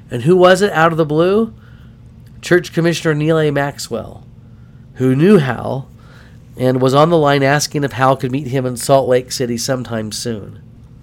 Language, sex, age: English, male, 40-59